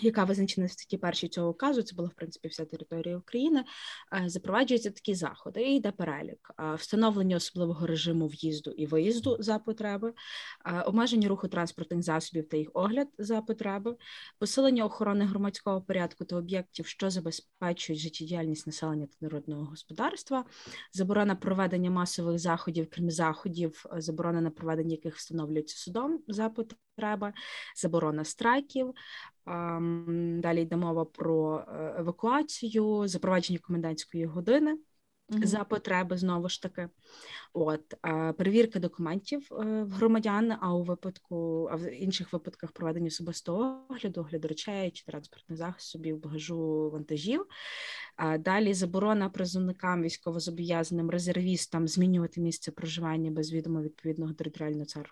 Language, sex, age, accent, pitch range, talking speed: Ukrainian, female, 20-39, native, 165-210 Hz, 120 wpm